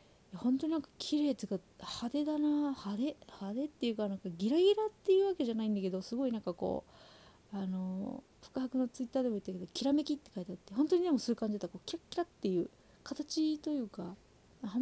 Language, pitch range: Japanese, 195-275 Hz